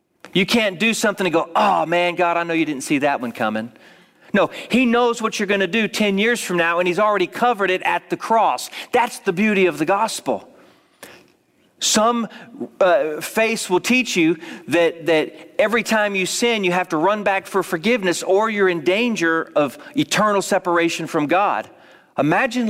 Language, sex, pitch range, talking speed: English, male, 160-225 Hz, 190 wpm